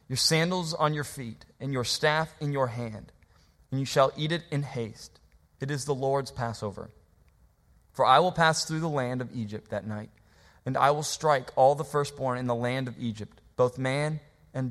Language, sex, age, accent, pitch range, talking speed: English, male, 20-39, American, 110-145 Hz, 200 wpm